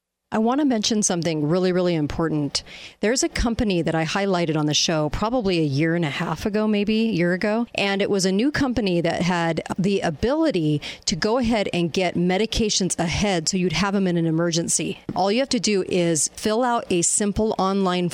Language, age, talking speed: English, 40-59, 210 wpm